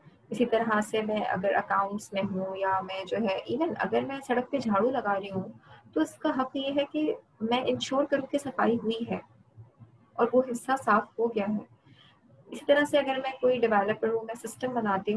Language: Urdu